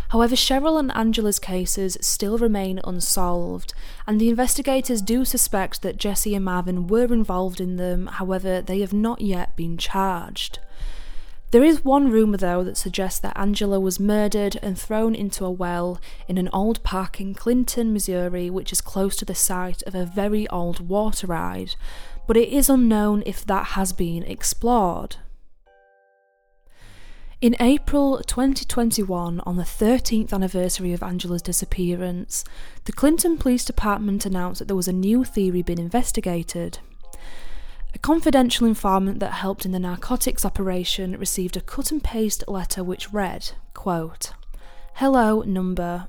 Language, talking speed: English, 145 wpm